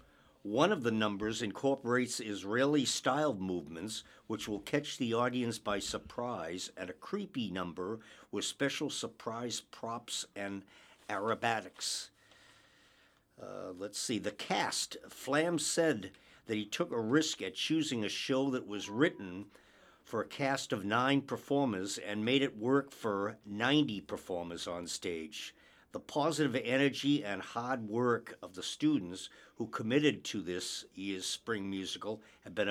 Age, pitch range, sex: 50-69, 105-140 Hz, male